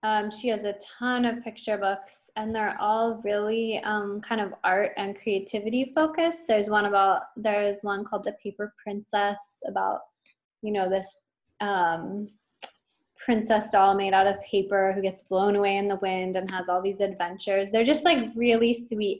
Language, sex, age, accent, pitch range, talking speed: English, female, 20-39, American, 190-215 Hz, 175 wpm